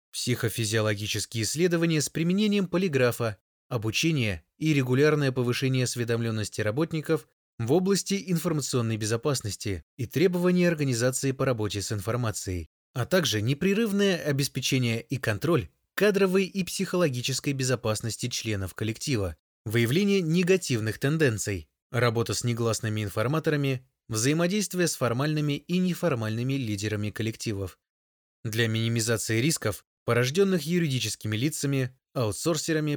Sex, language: male, Russian